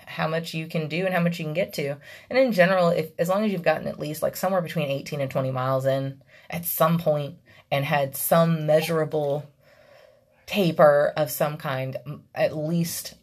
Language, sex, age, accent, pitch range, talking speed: English, female, 20-39, American, 130-155 Hz, 200 wpm